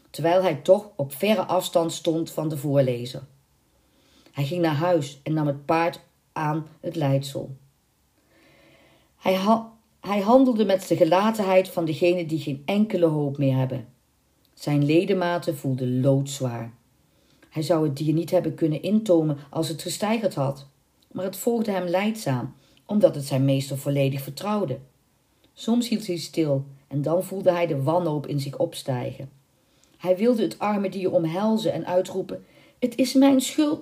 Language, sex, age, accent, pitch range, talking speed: Dutch, female, 40-59, Dutch, 140-205 Hz, 155 wpm